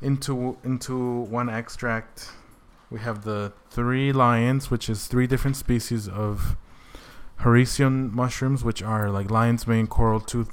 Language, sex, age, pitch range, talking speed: English, male, 20-39, 105-125 Hz, 135 wpm